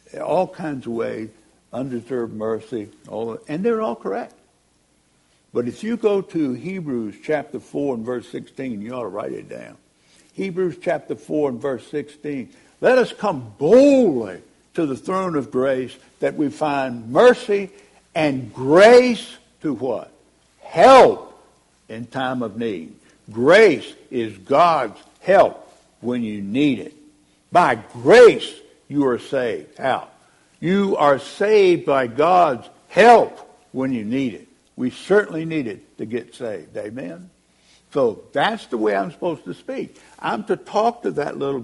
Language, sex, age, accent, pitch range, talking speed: English, male, 60-79, American, 120-190 Hz, 150 wpm